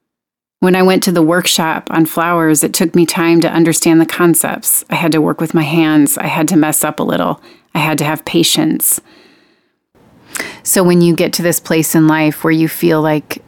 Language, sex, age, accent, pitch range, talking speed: English, female, 30-49, American, 155-175 Hz, 215 wpm